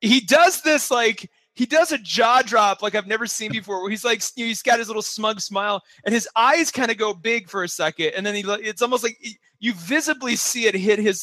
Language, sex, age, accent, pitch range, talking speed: English, male, 30-49, American, 170-225 Hz, 250 wpm